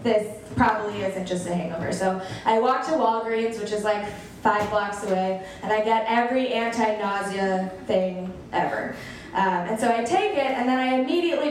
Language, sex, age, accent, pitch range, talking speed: English, female, 20-39, American, 220-335 Hz, 175 wpm